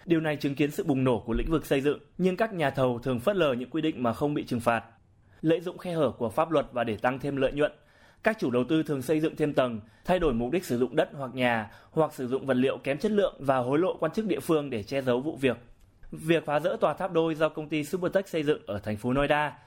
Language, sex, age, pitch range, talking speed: Vietnamese, male, 20-39, 125-165 Hz, 285 wpm